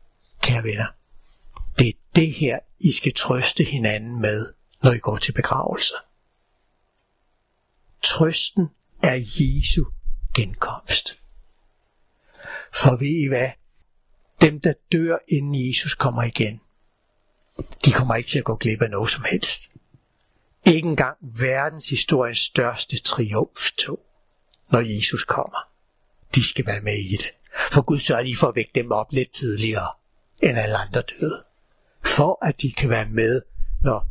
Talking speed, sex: 140 wpm, male